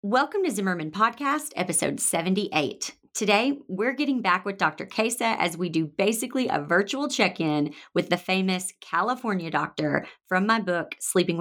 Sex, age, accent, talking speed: female, 30-49, American, 155 wpm